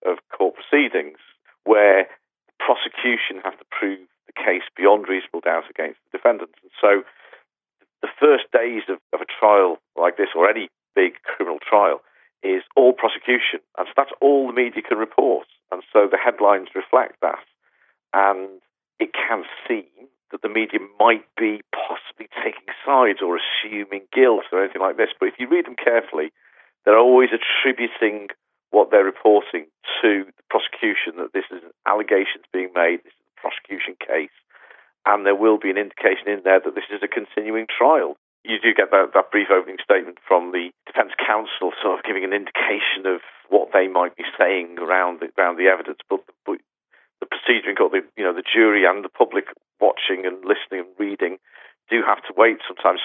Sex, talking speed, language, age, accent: male, 180 wpm, English, 50-69, British